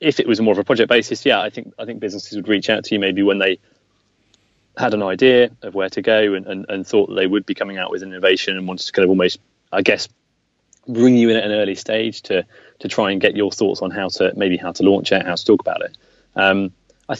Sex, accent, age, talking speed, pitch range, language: male, British, 20-39, 270 wpm, 95-105 Hz, English